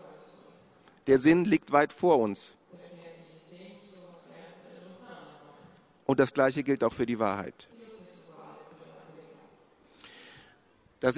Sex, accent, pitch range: male, German, 145-185 Hz